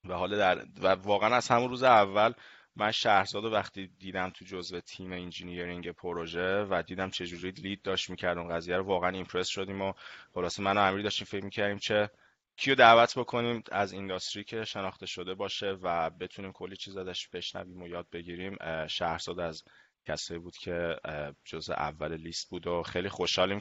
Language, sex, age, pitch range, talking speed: Persian, male, 20-39, 85-95 Hz, 175 wpm